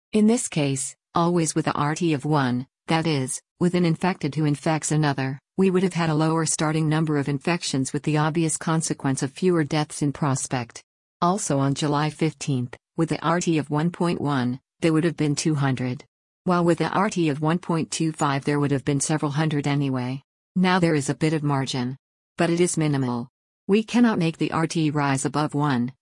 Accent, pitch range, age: American, 140-165 Hz, 50-69